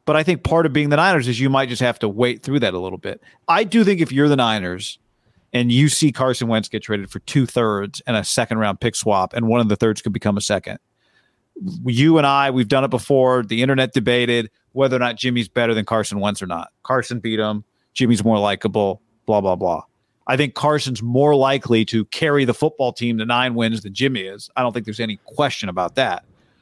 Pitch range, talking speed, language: 115-145 Hz, 230 wpm, English